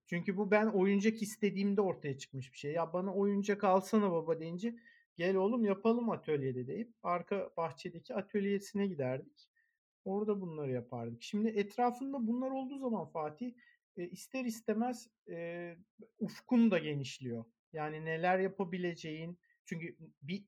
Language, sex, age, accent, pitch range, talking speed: Turkish, male, 50-69, native, 165-230 Hz, 125 wpm